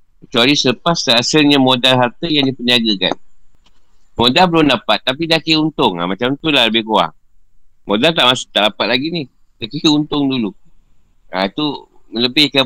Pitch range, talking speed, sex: 115-150 Hz, 155 wpm, male